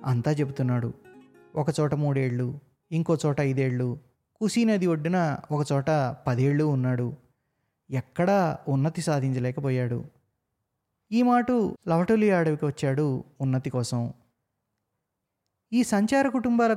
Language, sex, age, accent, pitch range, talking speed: Telugu, male, 20-39, native, 130-165 Hz, 95 wpm